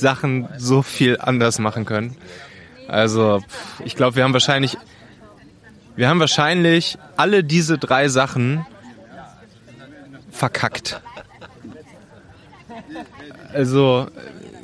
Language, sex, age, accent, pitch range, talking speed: German, male, 20-39, German, 120-155 Hz, 85 wpm